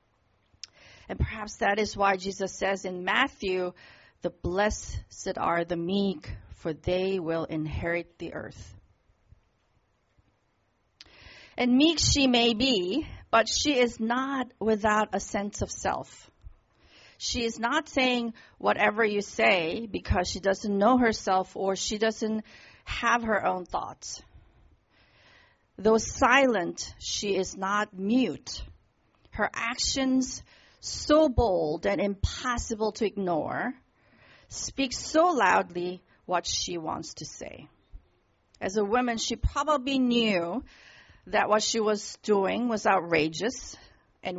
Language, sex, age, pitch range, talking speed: English, female, 40-59, 175-240 Hz, 120 wpm